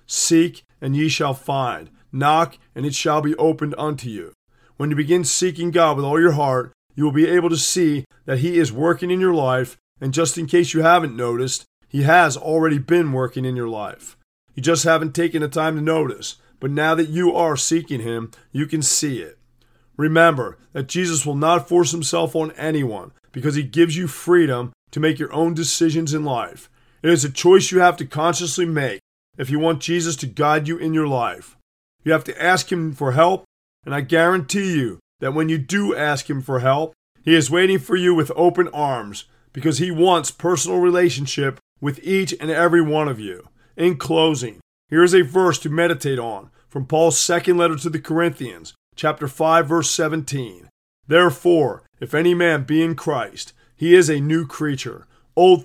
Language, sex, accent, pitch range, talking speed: English, male, American, 140-170 Hz, 195 wpm